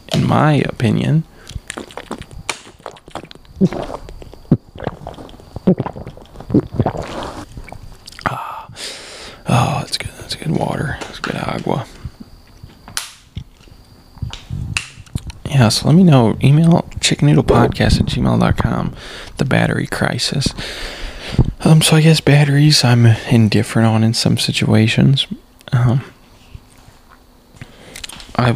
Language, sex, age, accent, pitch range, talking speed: English, male, 20-39, American, 105-135 Hz, 80 wpm